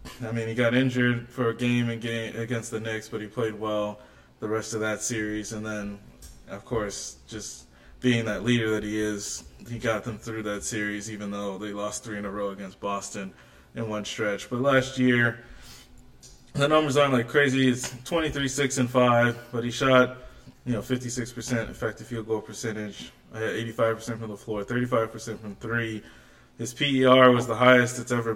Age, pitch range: 20-39, 100-125 Hz